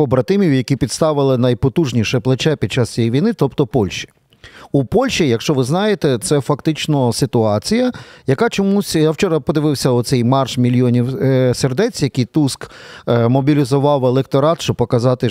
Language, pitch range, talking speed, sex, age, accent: Ukrainian, 125-165 Hz, 135 wpm, male, 40-59, native